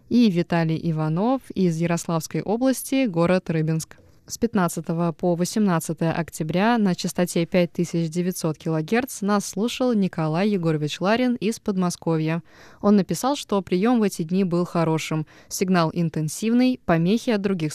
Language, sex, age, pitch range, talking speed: Russian, female, 20-39, 170-205 Hz, 130 wpm